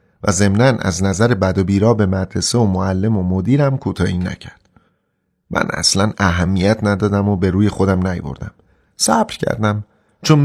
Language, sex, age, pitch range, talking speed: Persian, male, 30-49, 90-115 Hz, 155 wpm